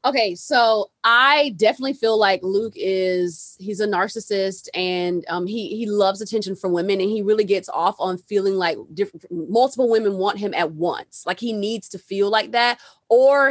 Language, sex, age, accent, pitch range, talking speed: English, female, 20-39, American, 190-250 Hz, 185 wpm